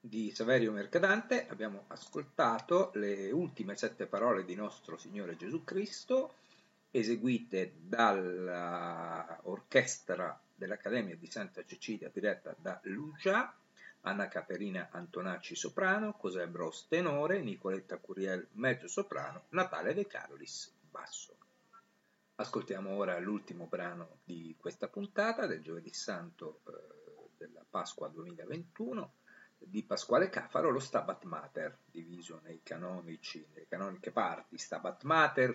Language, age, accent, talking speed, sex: Italian, 50-69, native, 110 wpm, male